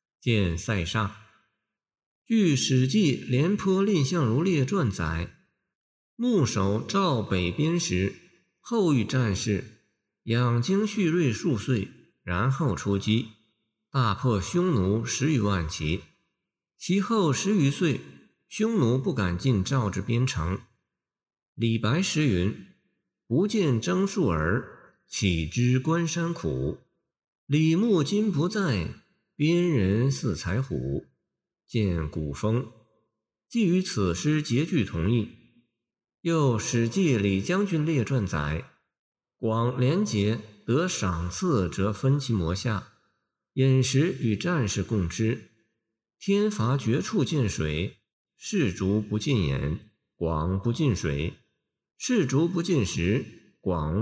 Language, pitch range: Chinese, 105-160 Hz